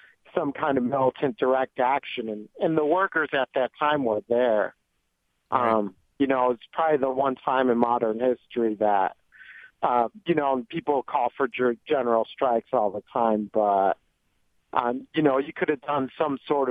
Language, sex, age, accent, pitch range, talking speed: English, male, 40-59, American, 120-145 Hz, 170 wpm